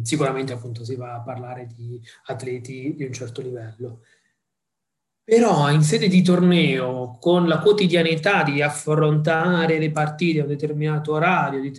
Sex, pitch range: male, 145-180 Hz